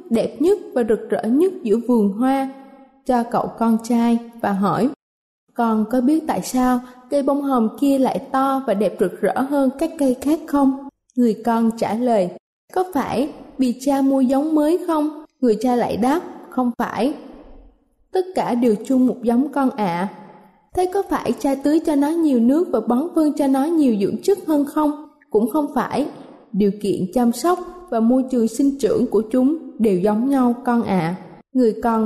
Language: Vietnamese